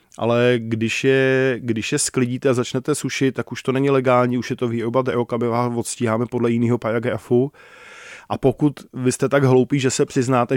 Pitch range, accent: 115-130 Hz, native